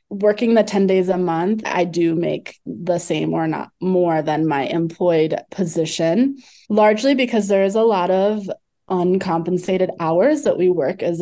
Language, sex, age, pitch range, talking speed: English, female, 20-39, 170-220 Hz, 165 wpm